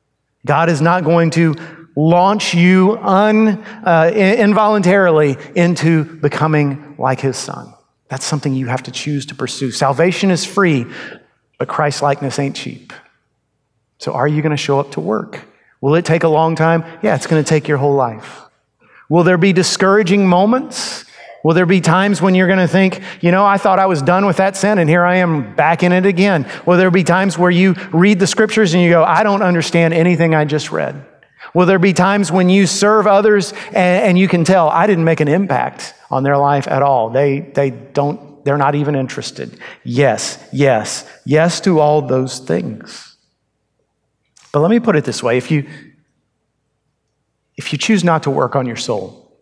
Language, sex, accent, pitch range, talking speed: English, male, American, 145-190 Hz, 190 wpm